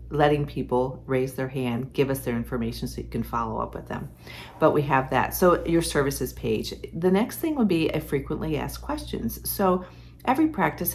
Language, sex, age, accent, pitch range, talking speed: English, female, 50-69, American, 125-165 Hz, 195 wpm